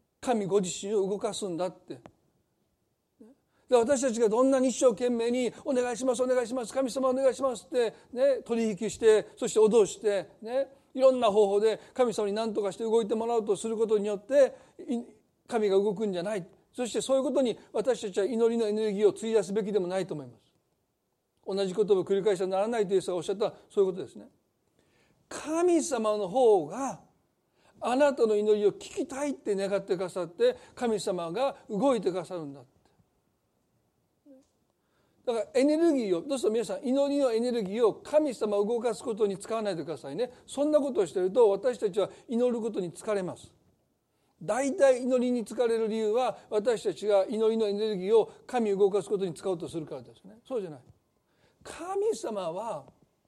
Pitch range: 205-265 Hz